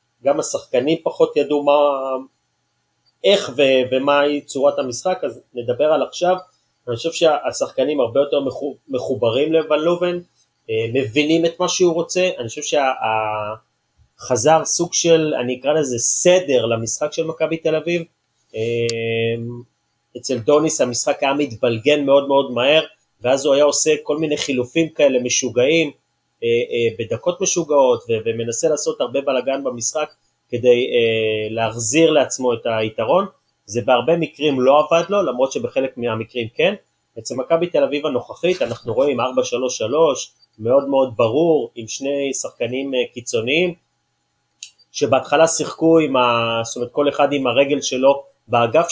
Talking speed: 130 wpm